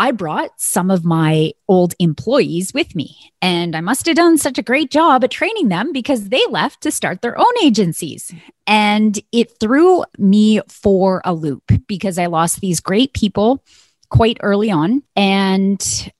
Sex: female